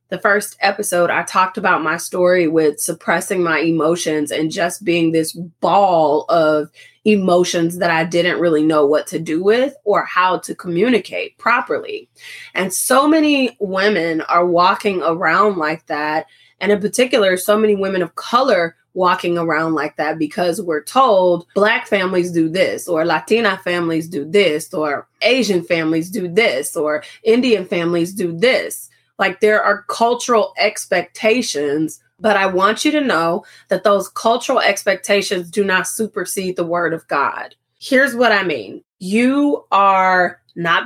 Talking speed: 155 wpm